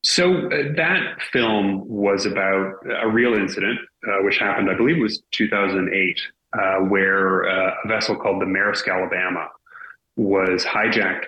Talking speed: 145 wpm